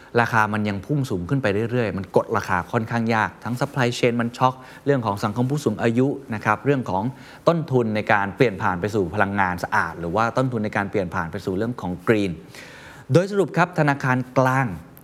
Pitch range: 105-140 Hz